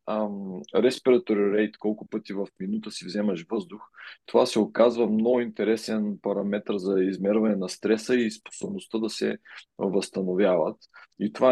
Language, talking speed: Bulgarian, 140 wpm